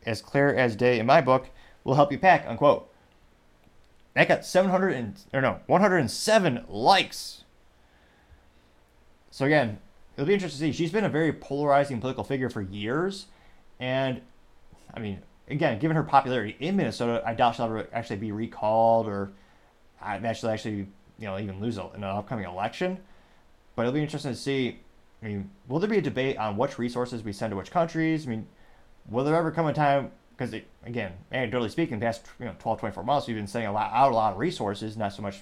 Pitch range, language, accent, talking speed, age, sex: 105-140 Hz, English, American, 195 wpm, 20-39, male